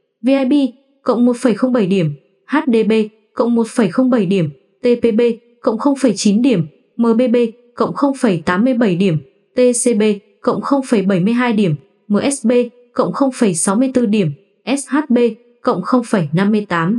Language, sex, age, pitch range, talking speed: Vietnamese, female, 20-39, 195-245 Hz, 95 wpm